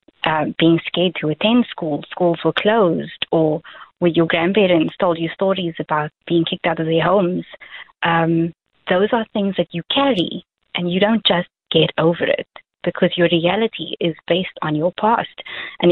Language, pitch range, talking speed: English, 160-195 Hz, 175 wpm